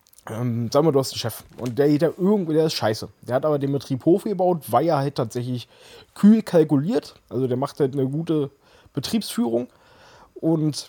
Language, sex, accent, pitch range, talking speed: German, male, German, 130-165 Hz, 205 wpm